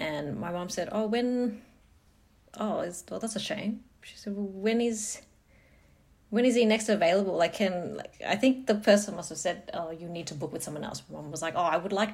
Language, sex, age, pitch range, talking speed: English, female, 30-49, 155-220 Hz, 235 wpm